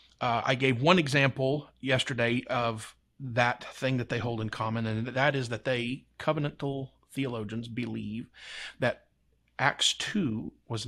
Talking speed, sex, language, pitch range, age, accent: 145 wpm, male, English, 115-140 Hz, 40-59, American